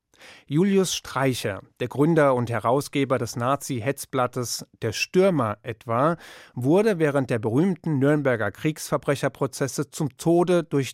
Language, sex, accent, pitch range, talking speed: German, male, German, 120-150 Hz, 110 wpm